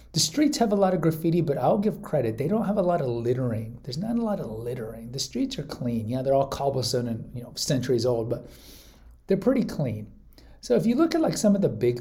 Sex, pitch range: male, 115-150 Hz